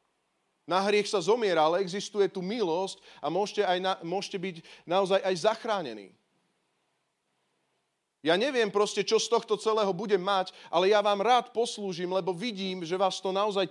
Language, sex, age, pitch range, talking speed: Slovak, male, 30-49, 160-230 Hz, 160 wpm